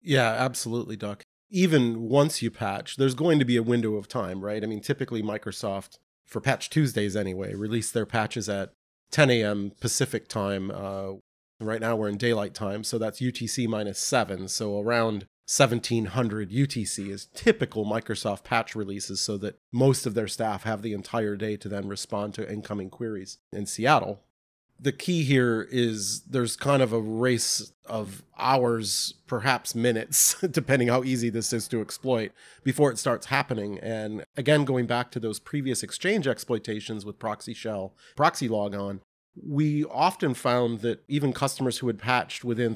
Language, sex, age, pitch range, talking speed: English, male, 30-49, 105-125 Hz, 165 wpm